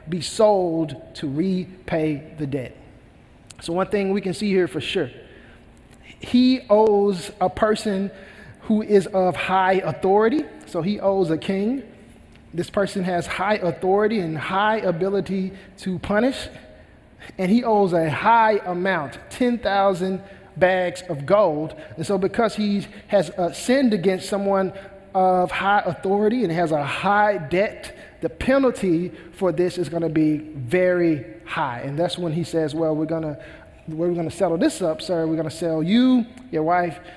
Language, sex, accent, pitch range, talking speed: English, male, American, 160-200 Hz, 160 wpm